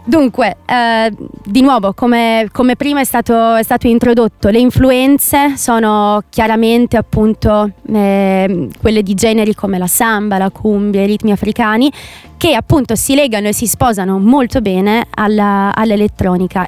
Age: 20-39